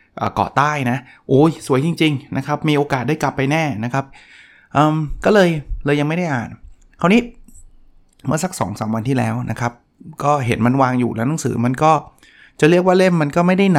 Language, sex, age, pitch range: Thai, male, 20-39, 120-145 Hz